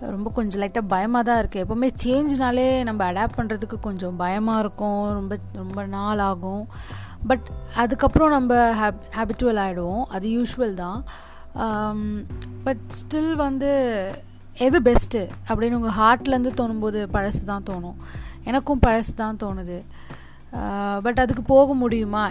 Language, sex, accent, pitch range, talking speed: Tamil, female, native, 205-260 Hz, 125 wpm